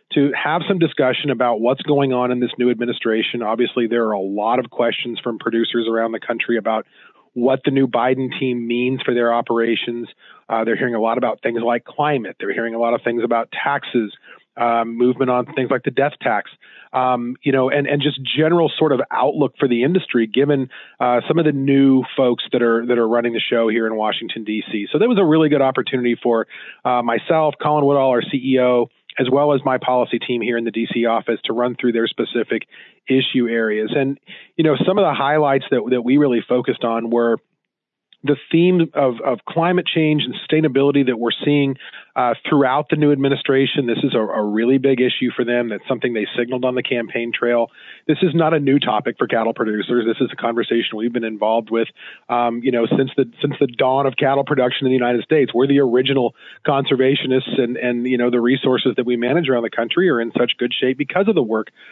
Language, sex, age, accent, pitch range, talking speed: English, male, 30-49, American, 115-140 Hz, 220 wpm